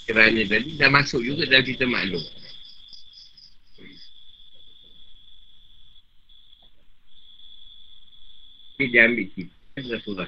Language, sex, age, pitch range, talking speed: Malay, male, 50-69, 100-155 Hz, 75 wpm